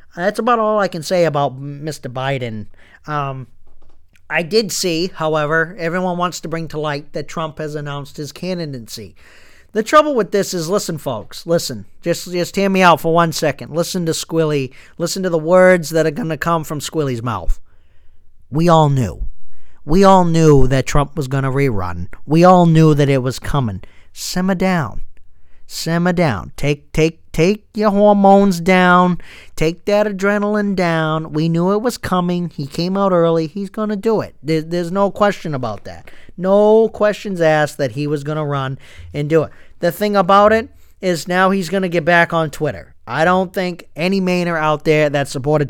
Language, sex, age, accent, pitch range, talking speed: English, male, 40-59, American, 135-180 Hz, 190 wpm